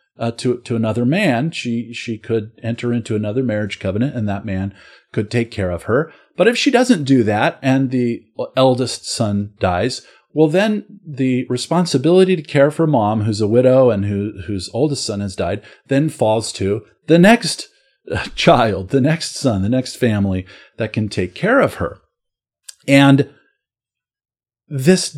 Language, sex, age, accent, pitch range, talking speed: English, male, 40-59, American, 110-155 Hz, 165 wpm